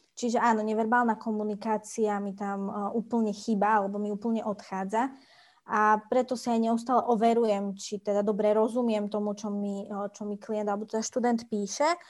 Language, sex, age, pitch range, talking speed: Slovak, female, 20-39, 205-235 Hz, 160 wpm